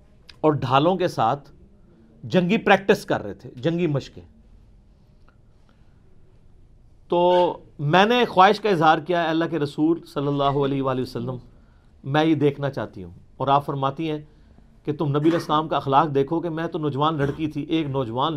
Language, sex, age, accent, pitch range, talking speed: English, male, 40-59, Indian, 140-180 Hz, 165 wpm